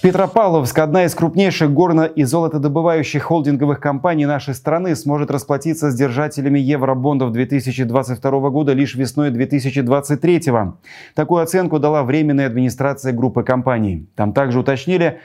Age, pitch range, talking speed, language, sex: 30-49, 125-150 Hz, 120 wpm, Russian, male